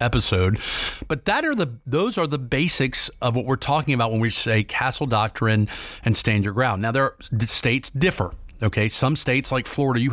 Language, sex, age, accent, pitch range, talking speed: English, male, 40-59, American, 110-150 Hz, 200 wpm